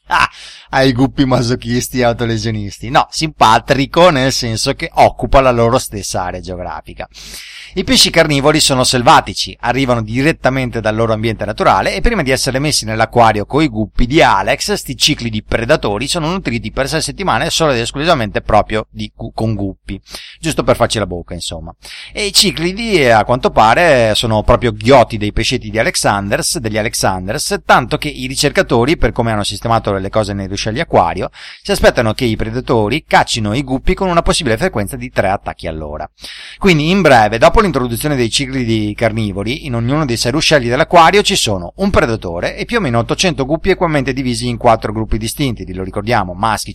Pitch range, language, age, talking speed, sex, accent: 110-150 Hz, English, 30-49, 180 wpm, male, Italian